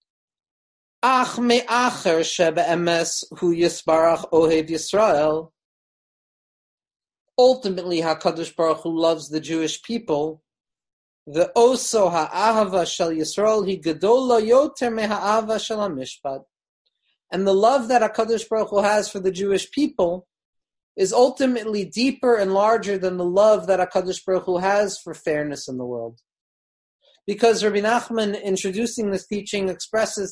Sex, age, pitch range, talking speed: male, 30-49, 165-220 Hz, 95 wpm